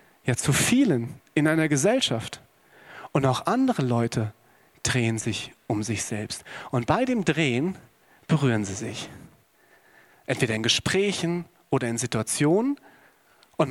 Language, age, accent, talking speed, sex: German, 40-59, German, 125 wpm, male